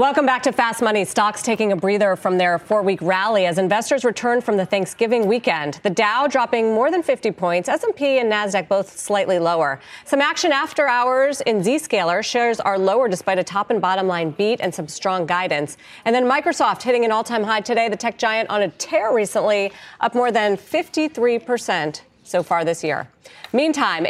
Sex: female